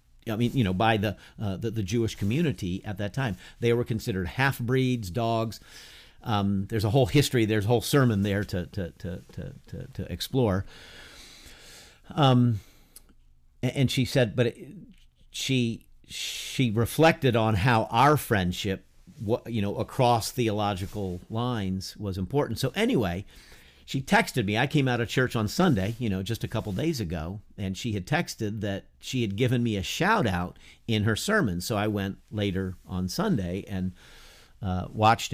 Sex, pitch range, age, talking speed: male, 95-125 Hz, 50-69, 170 wpm